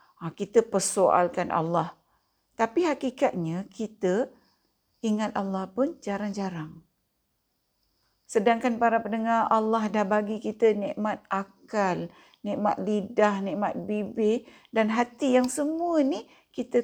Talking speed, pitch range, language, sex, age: 105 wpm, 195-245 Hz, Malay, female, 50-69